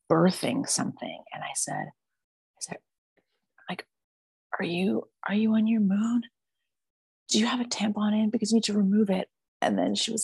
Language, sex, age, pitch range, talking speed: English, female, 30-49, 140-185 Hz, 180 wpm